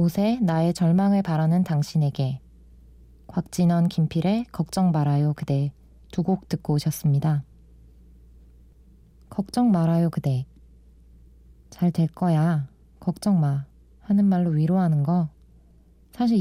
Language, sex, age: Korean, female, 20-39